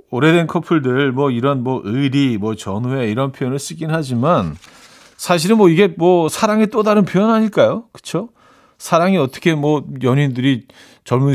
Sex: male